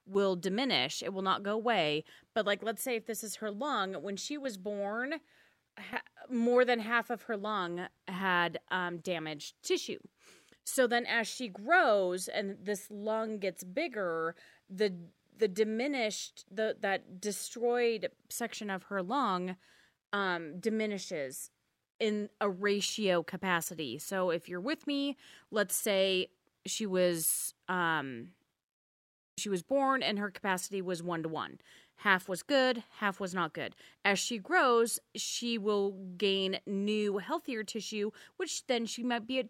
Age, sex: 30-49, female